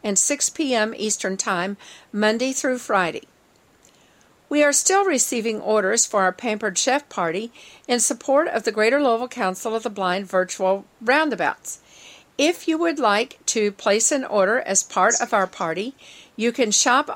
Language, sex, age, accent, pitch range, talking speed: English, female, 50-69, American, 205-260 Hz, 160 wpm